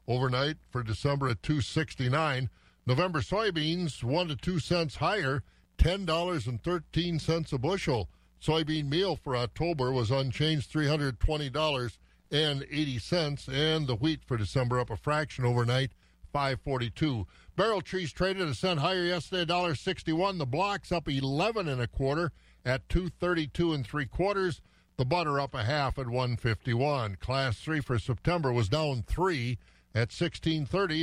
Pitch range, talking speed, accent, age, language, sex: 130-175 Hz, 170 wpm, American, 50-69, English, male